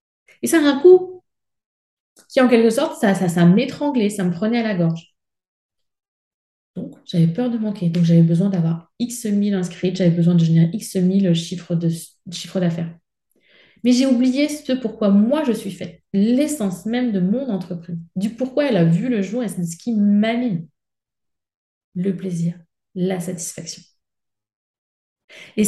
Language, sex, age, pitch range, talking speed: French, female, 30-49, 170-225 Hz, 165 wpm